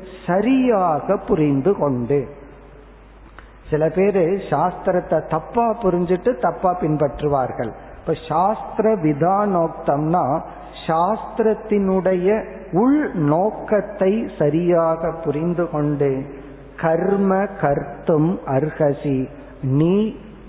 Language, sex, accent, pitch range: Tamil, male, native, 140-180 Hz